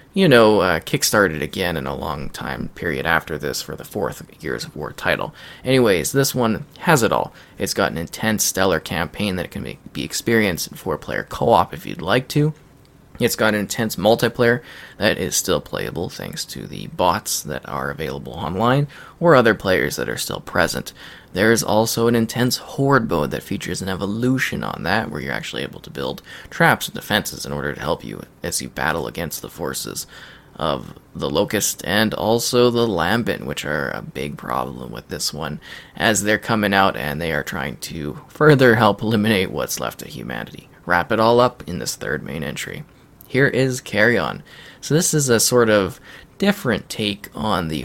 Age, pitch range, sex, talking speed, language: 20-39, 85-125 Hz, male, 195 wpm, English